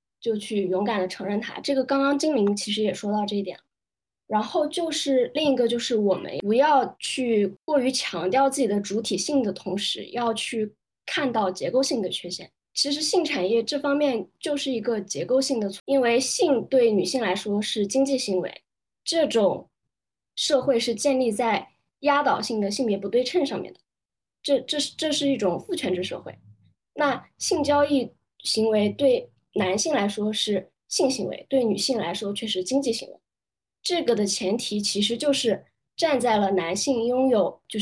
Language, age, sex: Chinese, 20-39, female